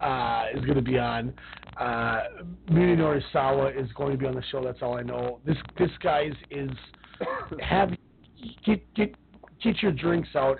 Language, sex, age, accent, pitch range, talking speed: English, male, 30-49, American, 125-150 Hz, 170 wpm